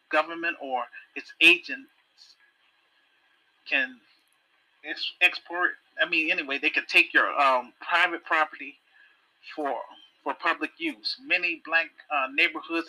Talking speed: 115 wpm